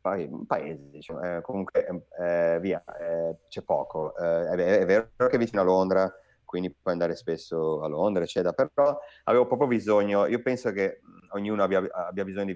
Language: Italian